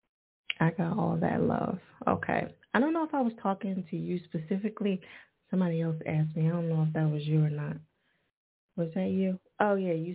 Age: 20-39